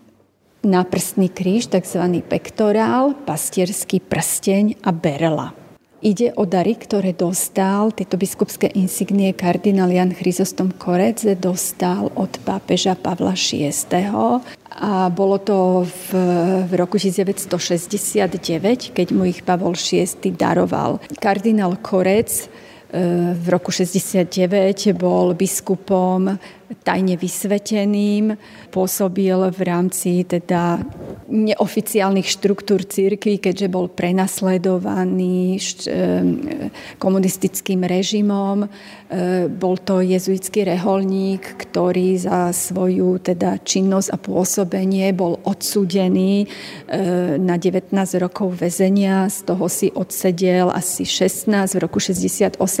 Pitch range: 180-200 Hz